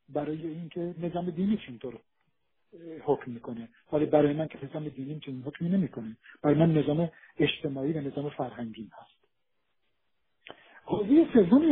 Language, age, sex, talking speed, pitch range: Persian, 50-69, male, 135 wpm, 140-180 Hz